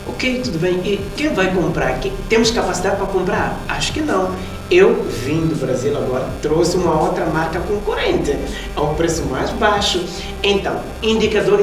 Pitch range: 140-190 Hz